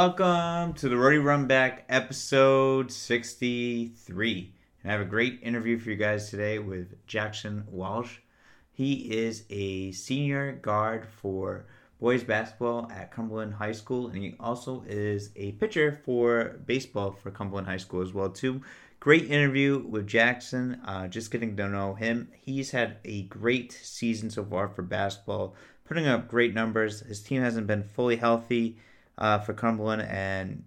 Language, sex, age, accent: English, male, 30-49, American